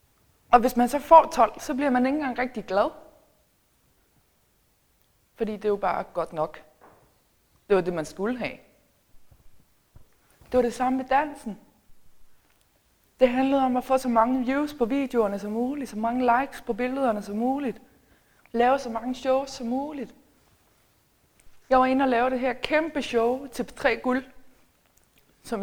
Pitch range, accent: 195-260 Hz, native